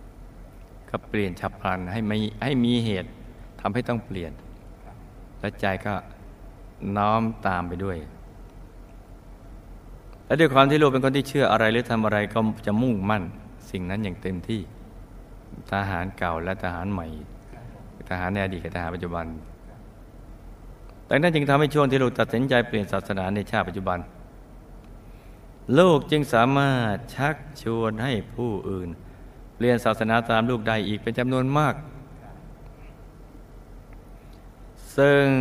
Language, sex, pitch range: Thai, male, 95-115 Hz